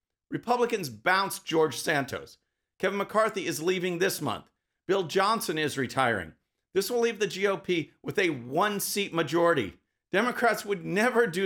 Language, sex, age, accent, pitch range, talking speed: English, male, 50-69, American, 155-220 Hz, 140 wpm